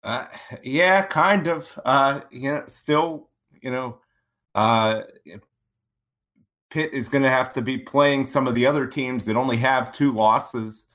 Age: 30-49